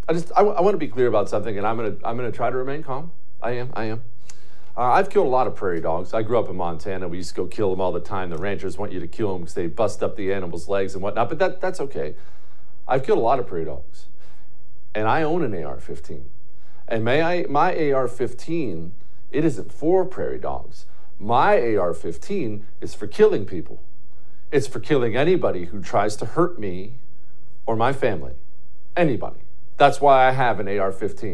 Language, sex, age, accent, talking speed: English, male, 50-69, American, 215 wpm